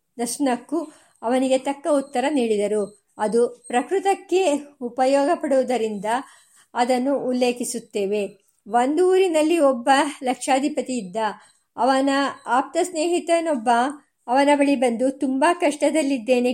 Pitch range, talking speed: 235-275 Hz, 85 wpm